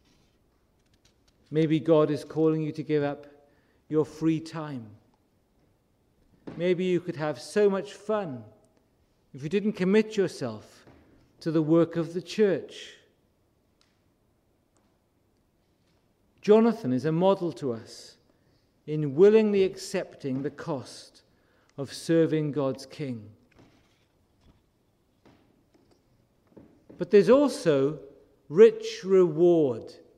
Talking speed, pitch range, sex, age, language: 95 wpm, 125-195 Hz, male, 50-69, English